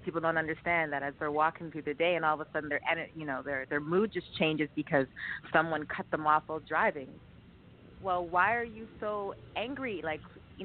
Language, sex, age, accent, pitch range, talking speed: English, female, 30-49, American, 155-205 Hz, 215 wpm